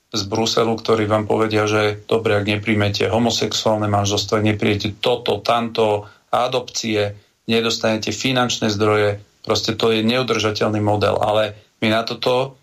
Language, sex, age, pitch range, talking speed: Slovak, male, 40-59, 110-120 Hz, 130 wpm